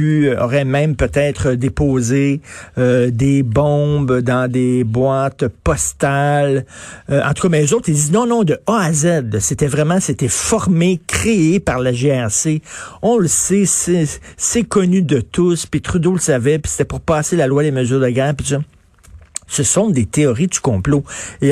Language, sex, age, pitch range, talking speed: French, male, 50-69, 115-155 Hz, 175 wpm